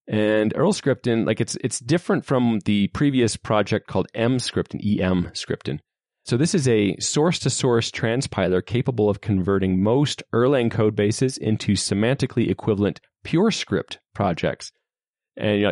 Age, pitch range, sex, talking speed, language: 30-49, 100-130 Hz, male, 135 wpm, English